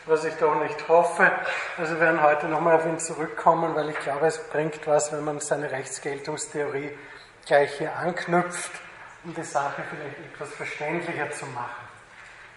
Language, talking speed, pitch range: German, 160 wpm, 150-175 Hz